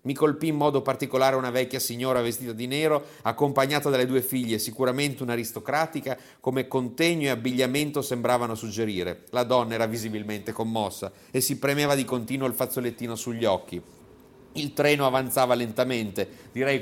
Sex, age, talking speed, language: male, 40-59, 150 wpm, Italian